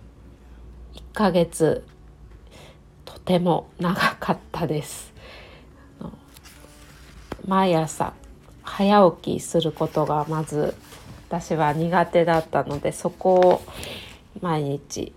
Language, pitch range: Japanese, 145-205 Hz